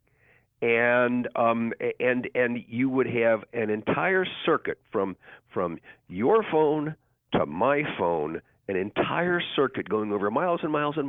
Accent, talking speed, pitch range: American, 140 wpm, 110-130 Hz